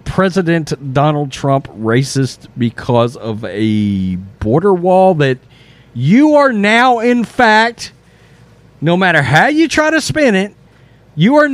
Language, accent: English, American